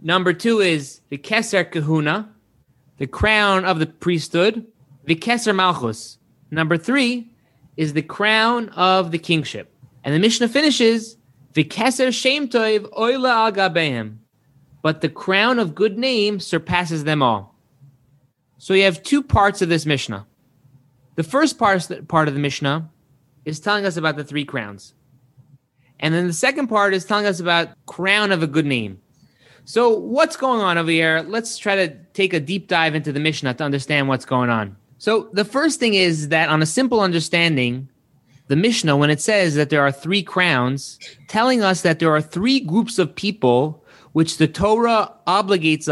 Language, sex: English, male